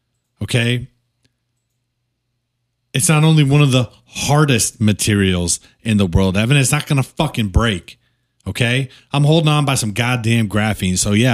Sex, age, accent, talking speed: male, 30-49, American, 155 wpm